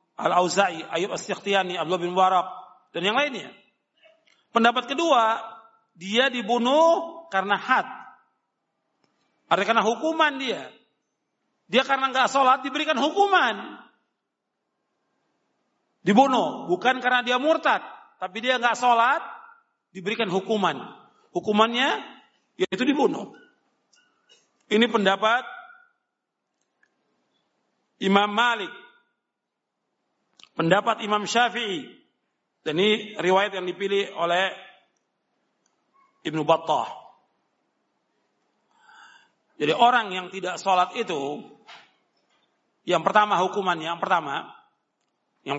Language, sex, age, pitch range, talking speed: Indonesian, male, 50-69, 185-265 Hz, 85 wpm